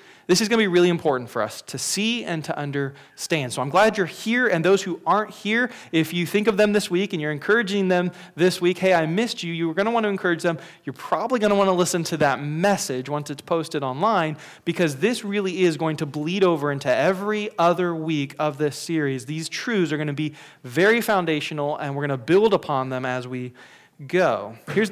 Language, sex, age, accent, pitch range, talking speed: English, male, 30-49, American, 145-190 Hz, 235 wpm